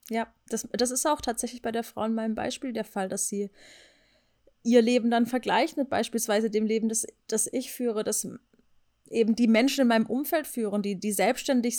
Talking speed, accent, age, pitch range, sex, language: 200 wpm, German, 30-49, 225-270 Hz, female, German